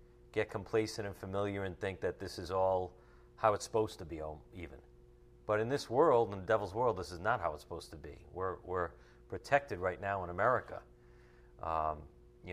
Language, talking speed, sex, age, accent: English, 195 wpm, male, 40-59, American